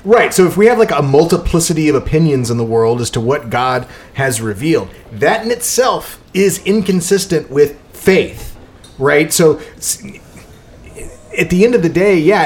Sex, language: male, English